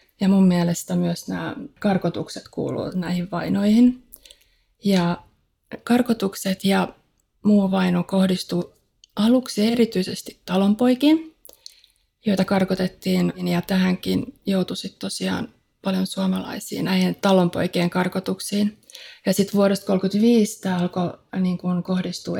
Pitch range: 175-195 Hz